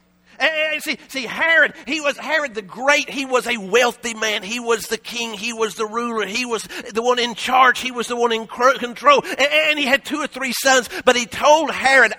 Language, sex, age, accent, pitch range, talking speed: English, male, 50-69, American, 180-270 Hz, 220 wpm